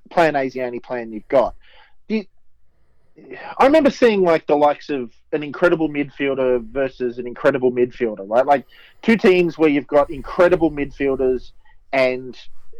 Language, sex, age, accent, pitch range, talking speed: English, male, 30-49, Australian, 130-180 Hz, 145 wpm